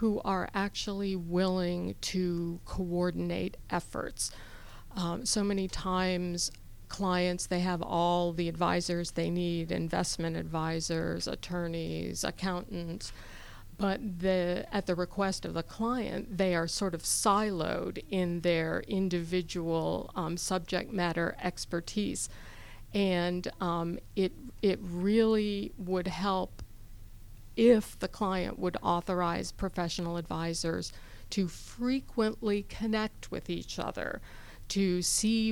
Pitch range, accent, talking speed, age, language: 165-195 Hz, American, 110 wpm, 50-69, English